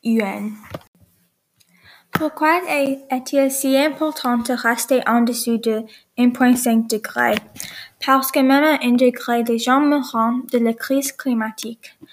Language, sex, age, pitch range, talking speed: English, female, 10-29, 225-260 Hz, 115 wpm